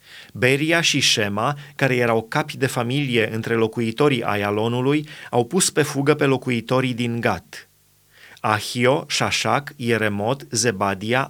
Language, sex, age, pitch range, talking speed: Romanian, male, 30-49, 110-135 Hz, 120 wpm